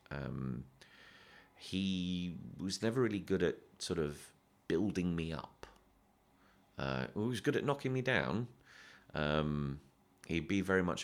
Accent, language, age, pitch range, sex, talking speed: British, English, 30-49, 75-95 Hz, male, 135 wpm